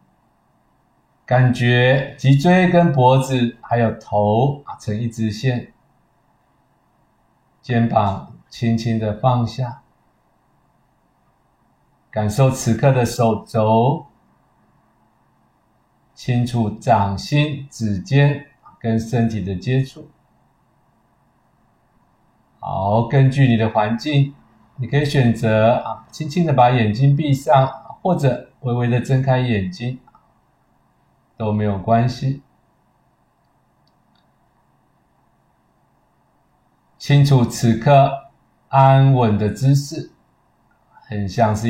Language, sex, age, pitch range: Chinese, male, 50-69, 110-135 Hz